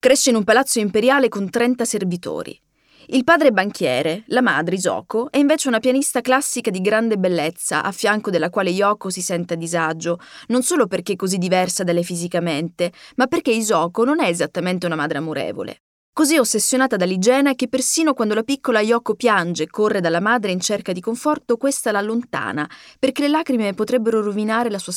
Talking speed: 185 wpm